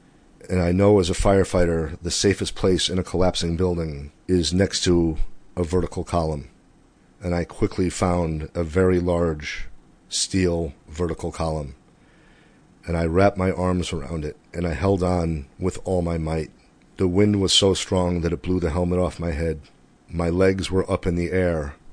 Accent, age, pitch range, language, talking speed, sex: American, 40-59, 85-95 Hz, English, 175 wpm, male